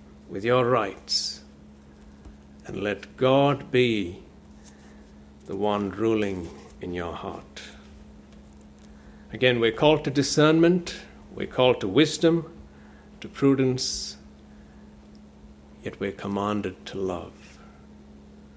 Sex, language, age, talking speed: male, English, 60-79, 95 wpm